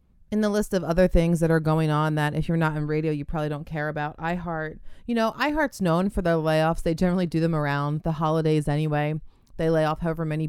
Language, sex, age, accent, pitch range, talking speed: English, female, 30-49, American, 155-190 Hz, 240 wpm